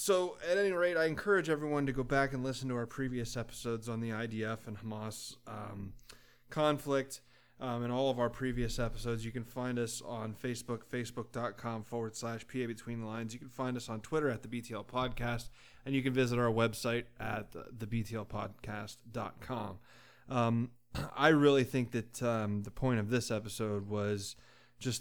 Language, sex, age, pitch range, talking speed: English, male, 20-39, 110-130 Hz, 180 wpm